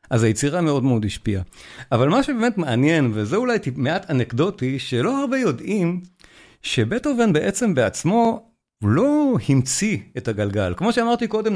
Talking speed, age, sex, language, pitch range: 140 wpm, 50-69, male, Hebrew, 120-180 Hz